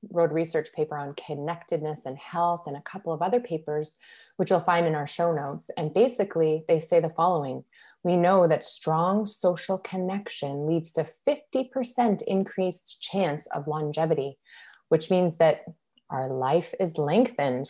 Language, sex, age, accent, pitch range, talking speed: English, female, 30-49, American, 155-200 Hz, 160 wpm